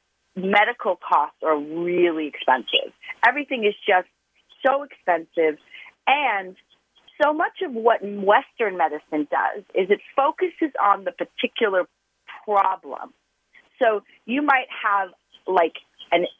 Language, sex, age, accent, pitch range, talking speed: English, female, 40-59, American, 180-275 Hz, 115 wpm